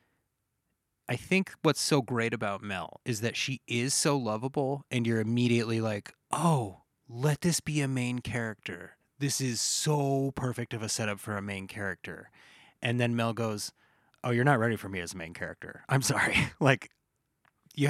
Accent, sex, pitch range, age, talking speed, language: American, male, 100-135 Hz, 30-49, 180 wpm, English